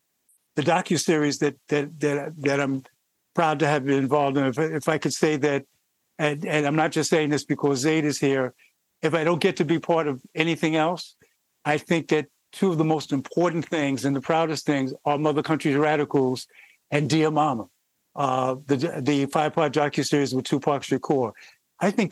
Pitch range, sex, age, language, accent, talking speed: 145-165 Hz, male, 50-69, English, American, 190 wpm